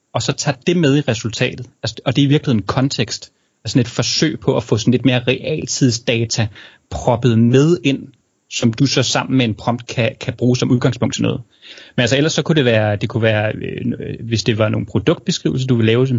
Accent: native